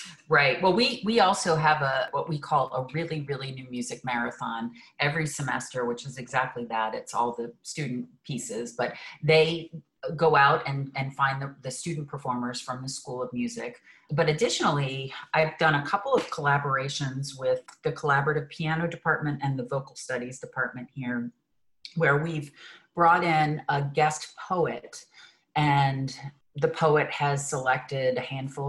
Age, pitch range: 40-59, 130-160 Hz